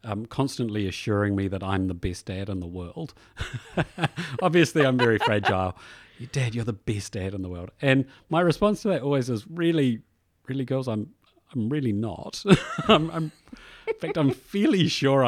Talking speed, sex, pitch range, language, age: 180 wpm, male, 95-140 Hz, English, 40-59